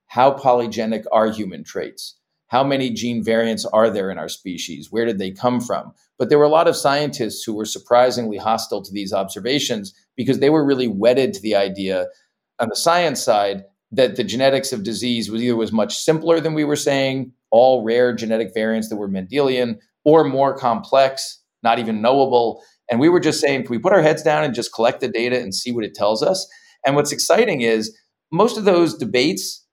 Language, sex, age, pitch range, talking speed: English, male, 40-59, 110-140 Hz, 205 wpm